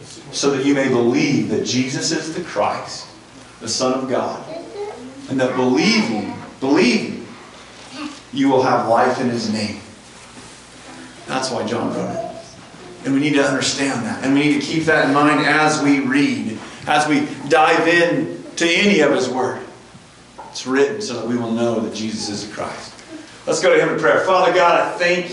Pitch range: 140-190 Hz